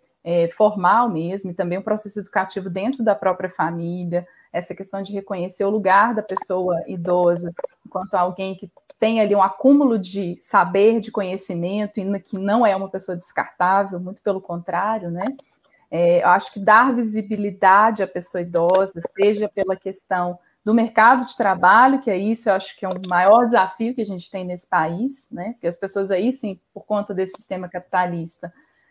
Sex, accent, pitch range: female, Brazilian, 185-220 Hz